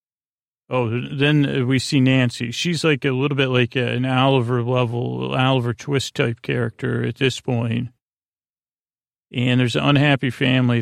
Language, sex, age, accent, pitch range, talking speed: English, male, 40-59, American, 120-135 Hz, 145 wpm